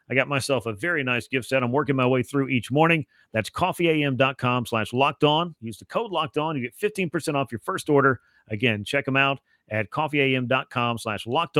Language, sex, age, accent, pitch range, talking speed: English, male, 40-59, American, 125-150 Hz, 205 wpm